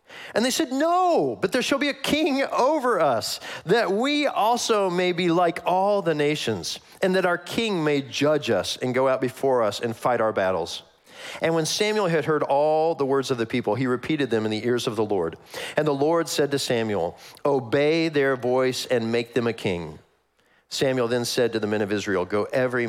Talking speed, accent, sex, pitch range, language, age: 210 wpm, American, male, 115-180 Hz, English, 40-59